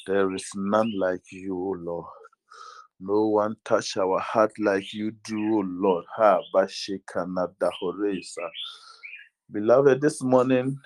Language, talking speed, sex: English, 115 wpm, male